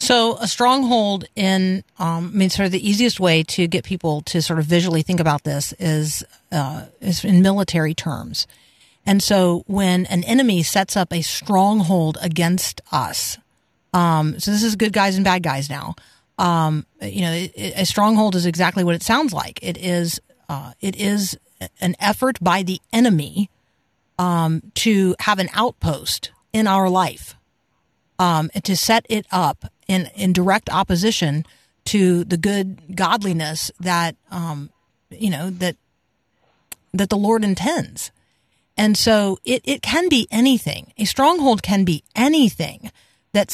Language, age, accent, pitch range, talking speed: English, 40-59, American, 170-210 Hz, 155 wpm